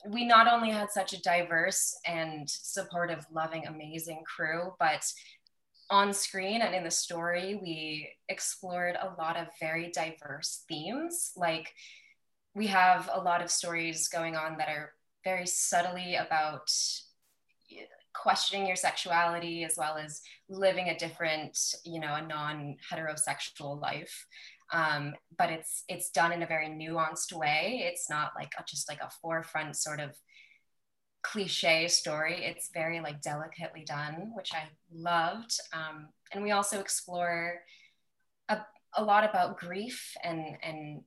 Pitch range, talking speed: 155-185 Hz, 140 wpm